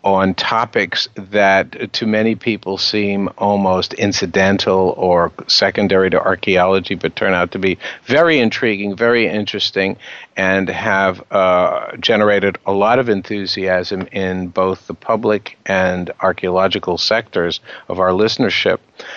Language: English